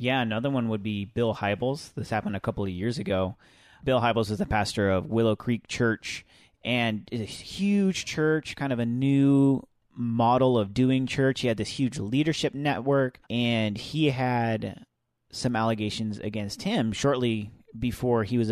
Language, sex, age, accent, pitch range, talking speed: English, male, 30-49, American, 100-120 Hz, 170 wpm